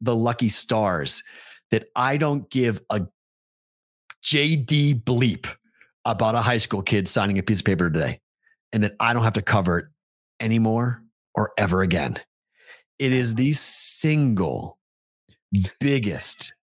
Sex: male